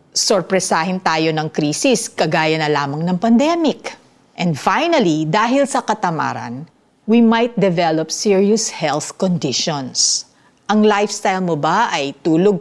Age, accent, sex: 50-69, native, female